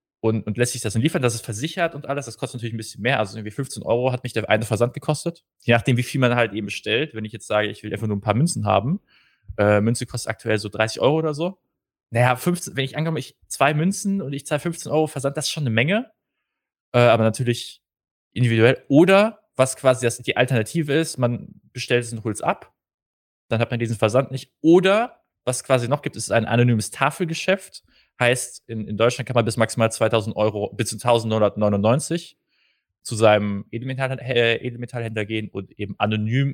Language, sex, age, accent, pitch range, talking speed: German, male, 20-39, German, 110-140 Hz, 215 wpm